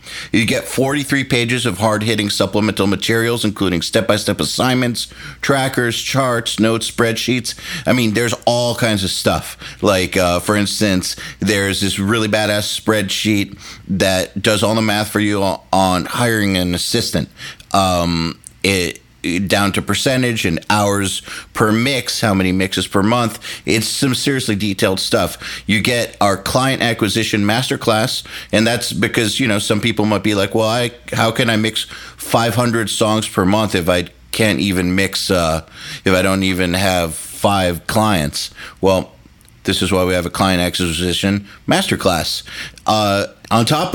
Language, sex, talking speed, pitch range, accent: English, male, 155 wpm, 95-115 Hz, American